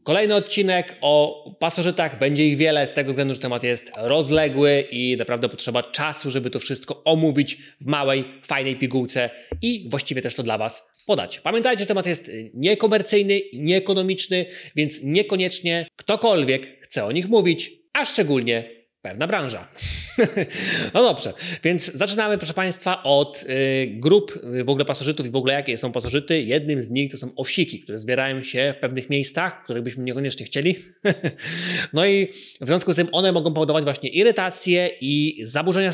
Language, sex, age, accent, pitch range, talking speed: Polish, male, 20-39, native, 125-180 Hz, 160 wpm